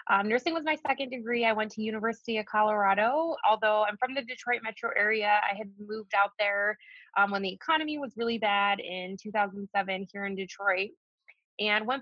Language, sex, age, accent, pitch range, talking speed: English, female, 20-39, American, 200-245 Hz, 190 wpm